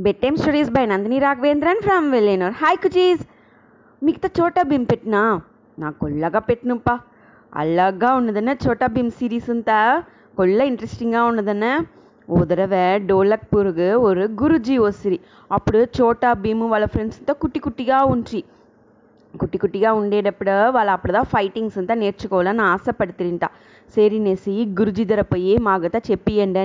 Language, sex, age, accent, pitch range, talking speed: English, female, 20-39, Indian, 190-245 Hz, 105 wpm